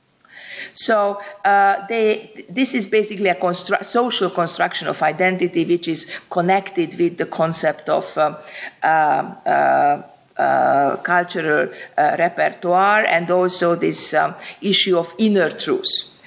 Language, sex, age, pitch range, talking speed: English, female, 50-69, 180-215 Hz, 120 wpm